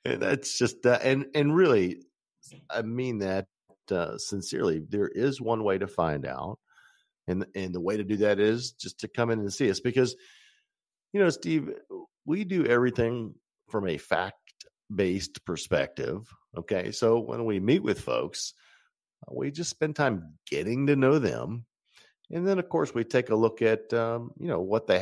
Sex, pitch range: male, 95-125 Hz